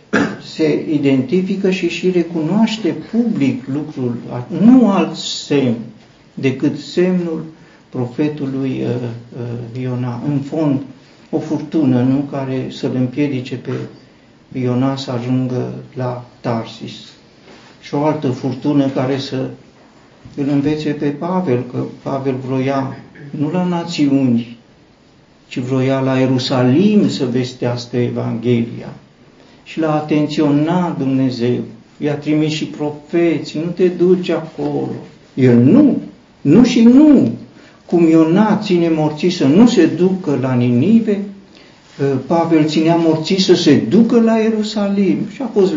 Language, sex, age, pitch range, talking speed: Romanian, male, 50-69, 130-170 Hz, 120 wpm